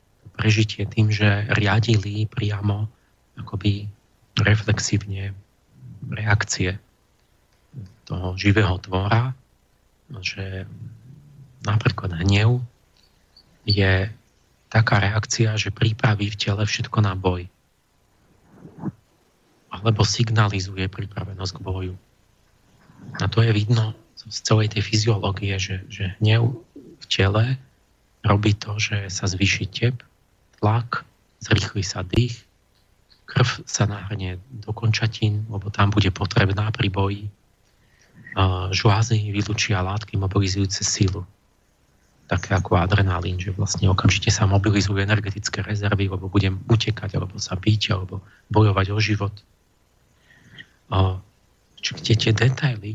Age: 40-59